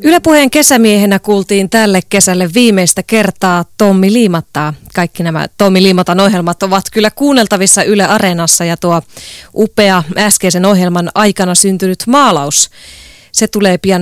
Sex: female